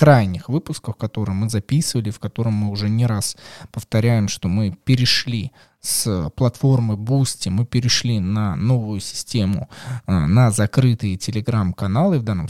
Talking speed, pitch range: 135 wpm, 105-130 Hz